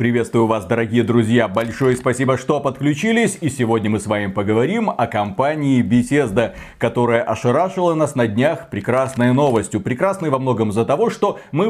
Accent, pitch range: native, 120-170 Hz